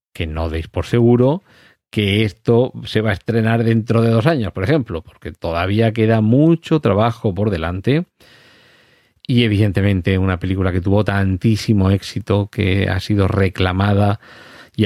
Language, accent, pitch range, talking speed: Spanish, Spanish, 95-115 Hz, 150 wpm